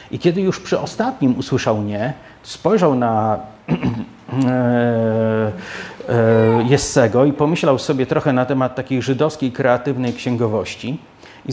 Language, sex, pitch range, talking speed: Polish, male, 125-185 Hz, 120 wpm